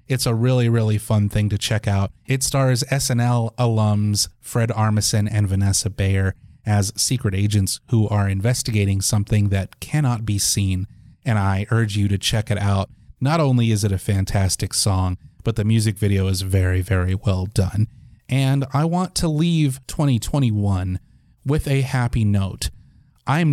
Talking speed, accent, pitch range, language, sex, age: 165 wpm, American, 100-125 Hz, English, male, 30-49